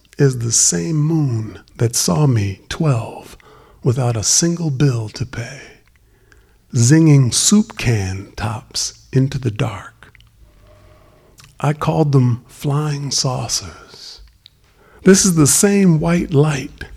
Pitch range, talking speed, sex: 105-155 Hz, 115 wpm, male